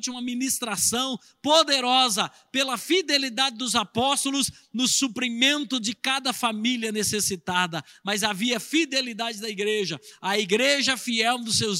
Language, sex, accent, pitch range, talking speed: Portuguese, male, Brazilian, 210-260 Hz, 115 wpm